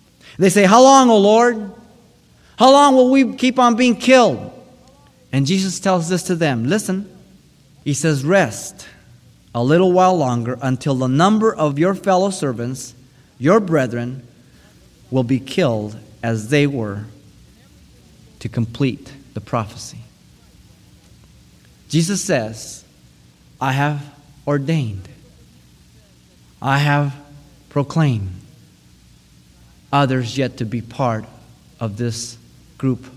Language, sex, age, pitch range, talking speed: English, male, 30-49, 110-165 Hz, 115 wpm